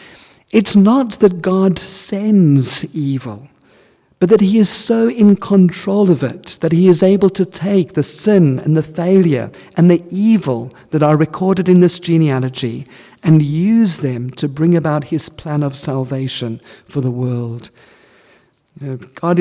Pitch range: 140-185 Hz